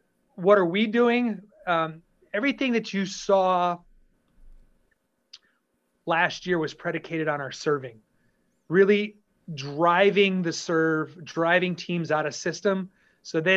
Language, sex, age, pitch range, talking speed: English, male, 30-49, 155-185 Hz, 120 wpm